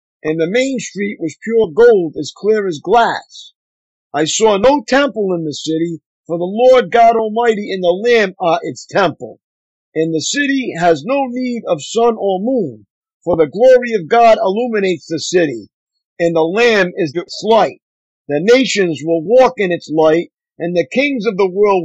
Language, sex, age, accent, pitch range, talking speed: English, male, 50-69, American, 165-240 Hz, 180 wpm